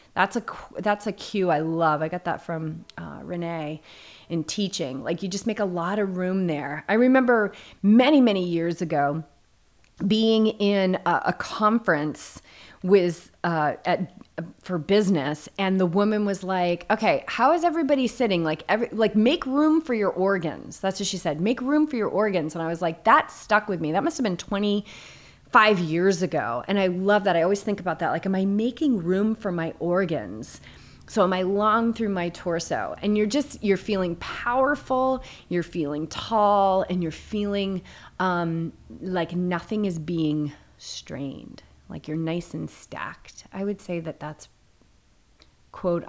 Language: English